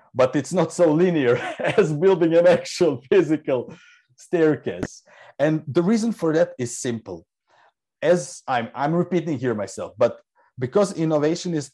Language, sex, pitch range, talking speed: English, male, 125-175 Hz, 145 wpm